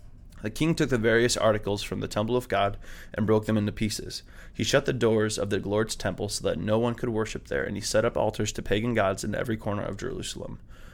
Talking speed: 240 wpm